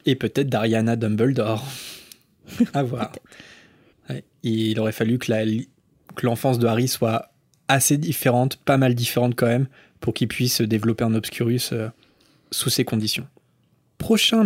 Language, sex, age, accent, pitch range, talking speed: French, male, 20-39, French, 115-150 Hz, 135 wpm